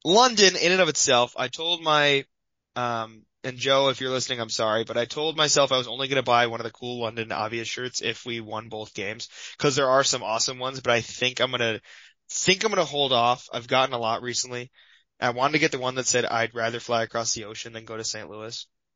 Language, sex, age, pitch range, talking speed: English, male, 20-39, 115-140 Hz, 255 wpm